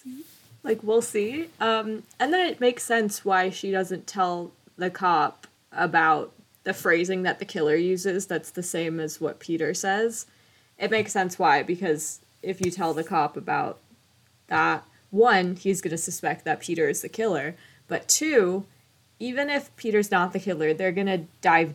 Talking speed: 175 wpm